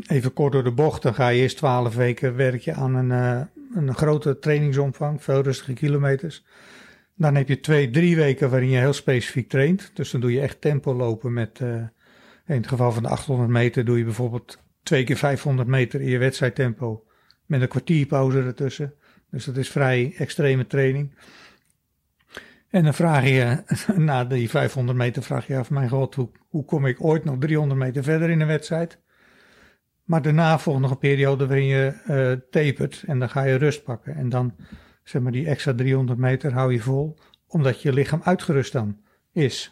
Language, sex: Dutch, male